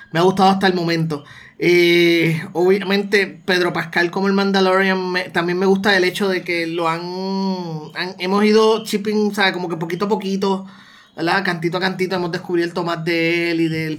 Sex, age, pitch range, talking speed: male, 30-49, 170-200 Hz, 190 wpm